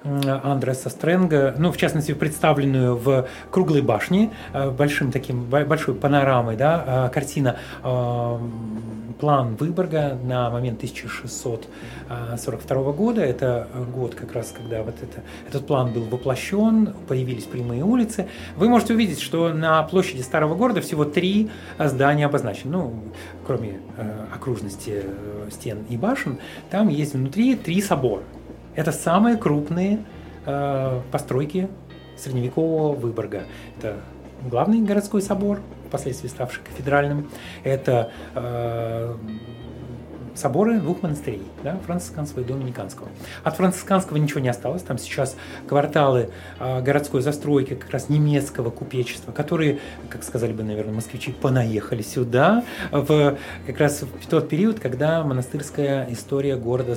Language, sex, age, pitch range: Russian, male, 30-49, 120-155 Hz